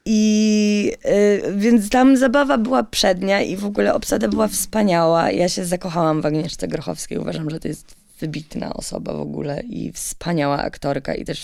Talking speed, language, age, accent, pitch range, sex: 165 wpm, Polish, 20-39, native, 155-215 Hz, female